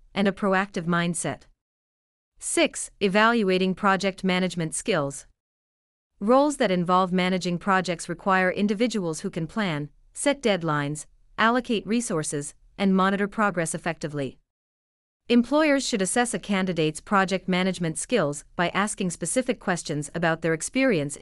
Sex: female